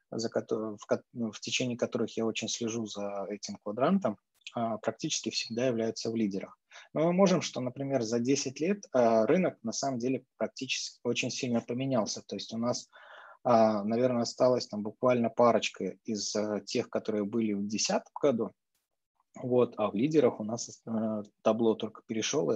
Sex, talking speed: male, 150 wpm